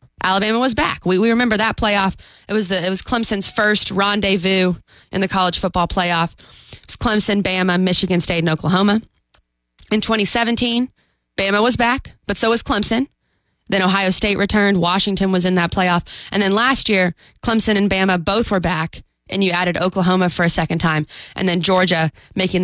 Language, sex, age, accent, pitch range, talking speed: English, female, 20-39, American, 175-230 Hz, 180 wpm